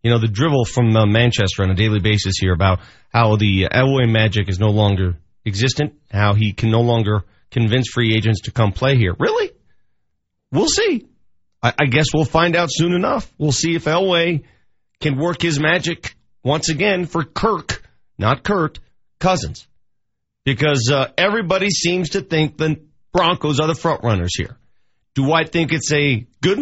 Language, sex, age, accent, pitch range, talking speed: English, male, 40-59, American, 105-150 Hz, 180 wpm